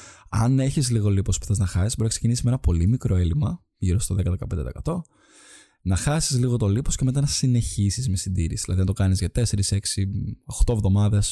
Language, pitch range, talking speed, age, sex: Greek, 95-120 Hz, 205 wpm, 20-39, male